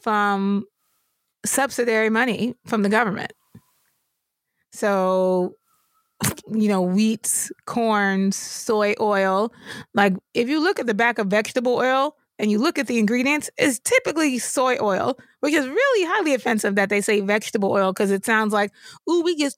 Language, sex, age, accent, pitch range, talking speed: English, female, 20-39, American, 200-255 Hz, 155 wpm